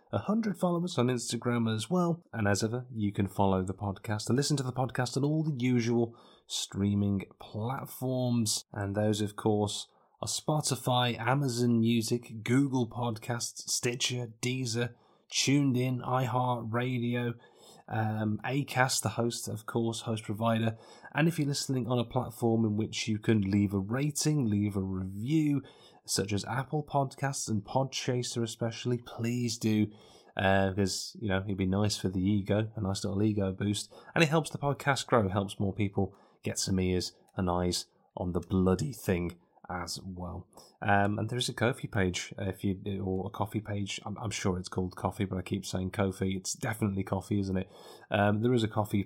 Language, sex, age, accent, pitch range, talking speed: English, male, 30-49, British, 100-125 Hz, 170 wpm